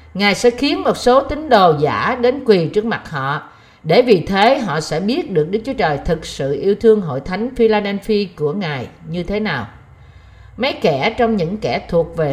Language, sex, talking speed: Vietnamese, female, 205 wpm